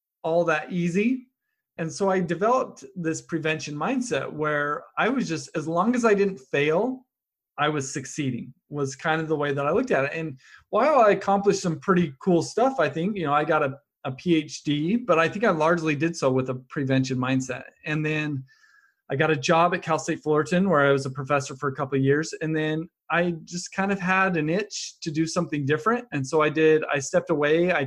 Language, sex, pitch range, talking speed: English, male, 140-180 Hz, 215 wpm